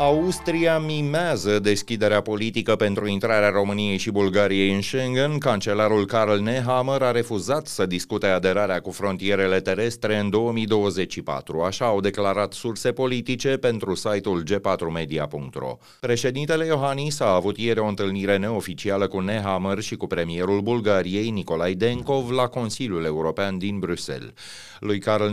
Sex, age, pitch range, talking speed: male, 30-49, 95-120 Hz, 130 wpm